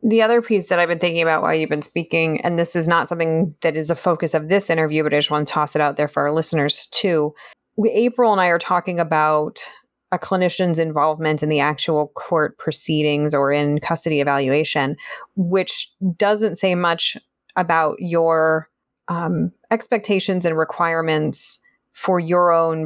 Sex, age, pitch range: female, 20-39, 155-185 Hz